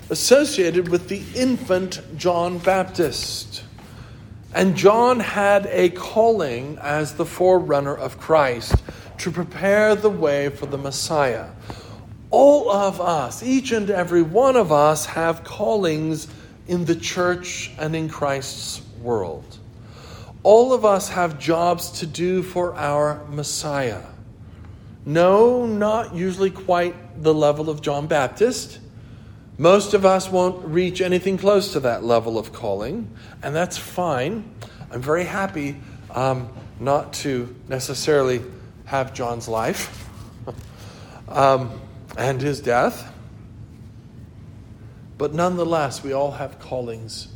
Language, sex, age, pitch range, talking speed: English, male, 50-69, 115-180 Hz, 120 wpm